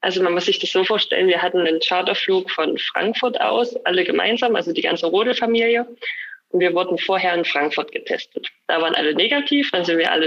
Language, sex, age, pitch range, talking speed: German, female, 20-39, 165-230 Hz, 210 wpm